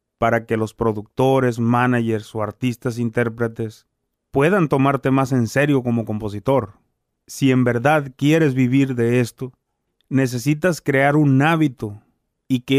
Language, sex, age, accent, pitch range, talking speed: Spanish, male, 30-49, Mexican, 125-150 Hz, 130 wpm